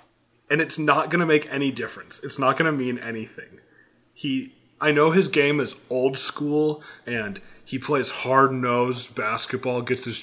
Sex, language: male, English